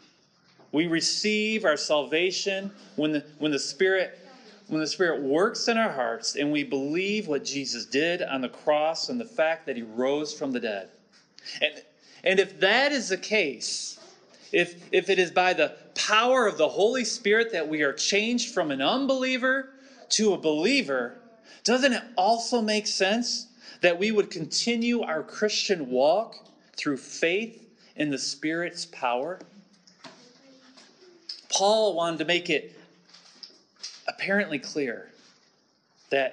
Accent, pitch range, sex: American, 150-230 Hz, male